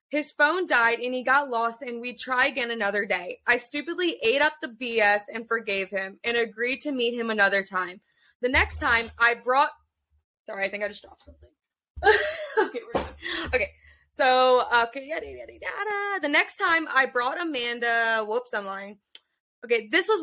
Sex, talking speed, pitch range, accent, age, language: female, 185 wpm, 225-300 Hz, American, 20-39, English